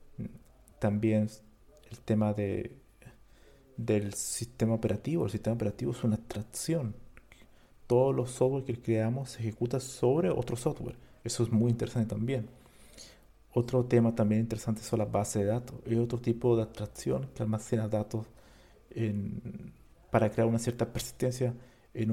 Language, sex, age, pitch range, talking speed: Spanish, male, 50-69, 105-120 Hz, 140 wpm